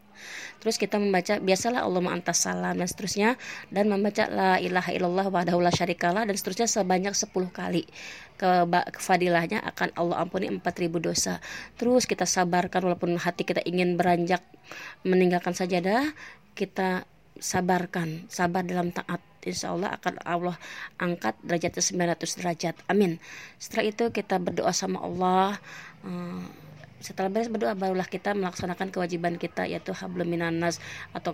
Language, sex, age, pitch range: Arabic, female, 20-39, 175-195 Hz